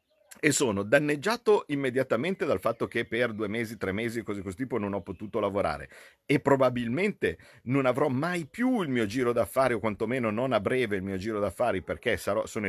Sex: male